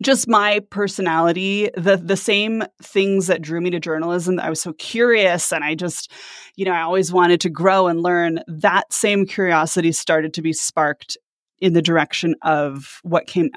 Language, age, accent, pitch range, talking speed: English, 20-39, American, 160-210 Hz, 180 wpm